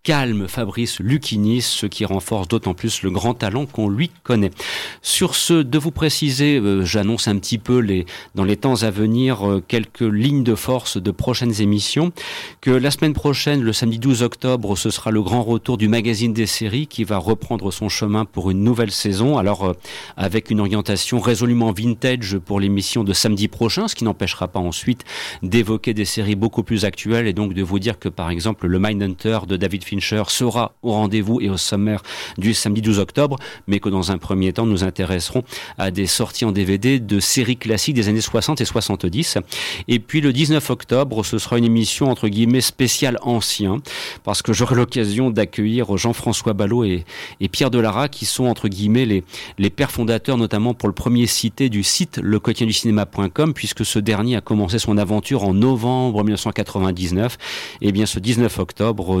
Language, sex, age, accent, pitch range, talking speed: French, male, 40-59, French, 100-120 Hz, 190 wpm